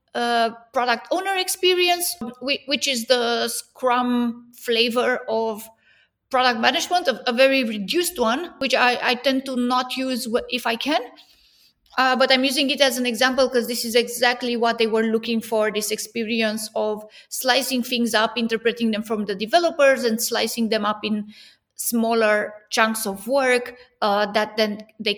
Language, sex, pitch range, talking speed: English, female, 230-270 Hz, 160 wpm